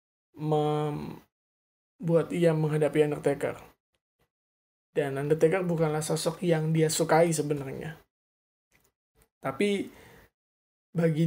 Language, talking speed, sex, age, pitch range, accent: Indonesian, 75 wpm, male, 20-39, 150-170 Hz, native